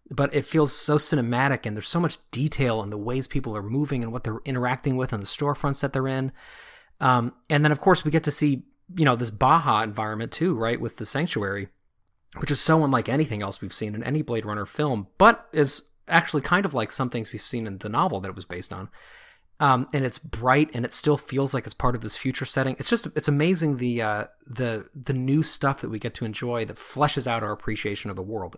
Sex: male